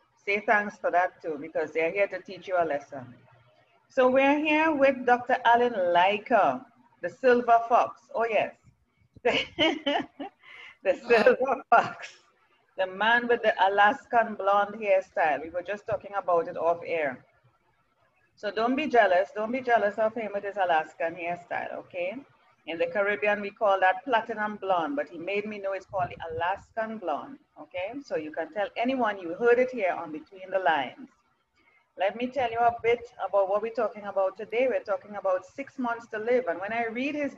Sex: female